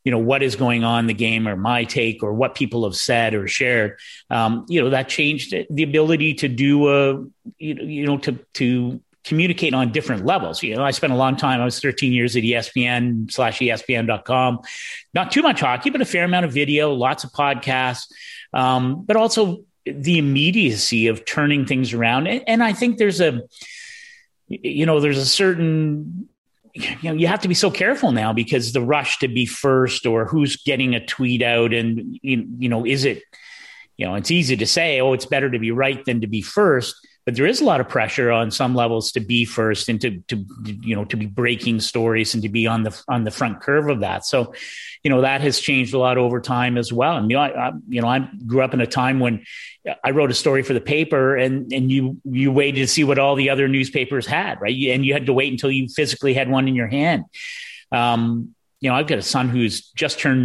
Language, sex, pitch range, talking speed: English, male, 120-150 Hz, 225 wpm